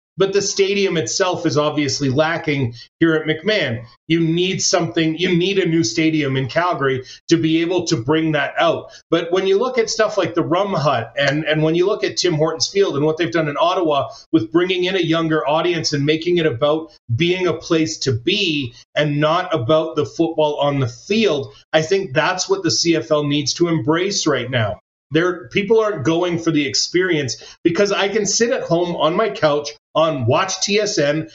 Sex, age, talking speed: male, 30-49, 200 wpm